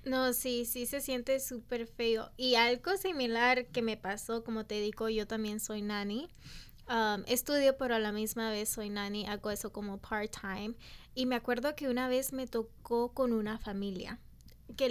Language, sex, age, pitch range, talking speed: Spanish, female, 20-39, 220-260 Hz, 180 wpm